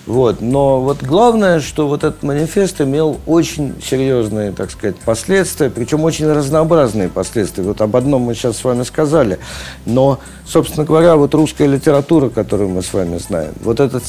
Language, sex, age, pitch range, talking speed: Russian, male, 50-69, 100-140 Hz, 165 wpm